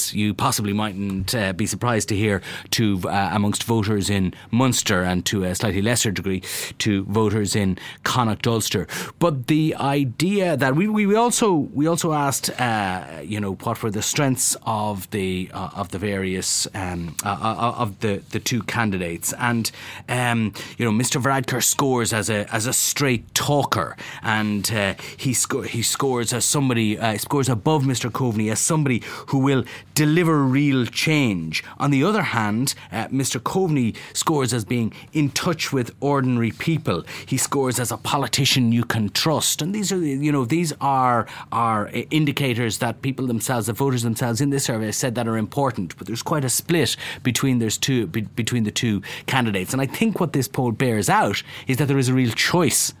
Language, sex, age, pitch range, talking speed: English, male, 30-49, 105-140 Hz, 185 wpm